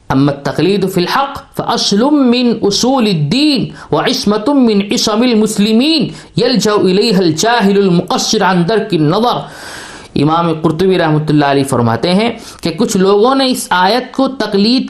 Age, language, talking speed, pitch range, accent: 50-69, English, 135 wpm, 160-225 Hz, Indian